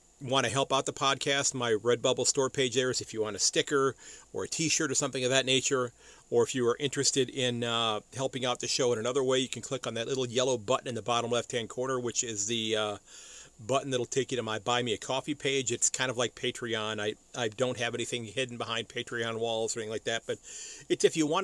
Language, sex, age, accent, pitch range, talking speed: English, male, 40-59, American, 120-140 Hz, 255 wpm